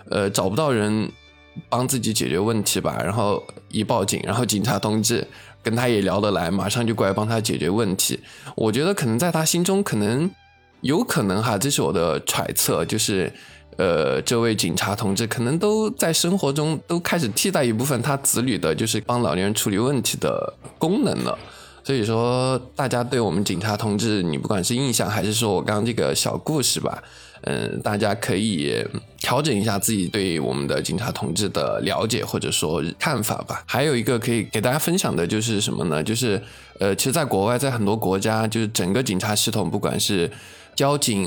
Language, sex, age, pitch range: Chinese, male, 20-39, 100-130 Hz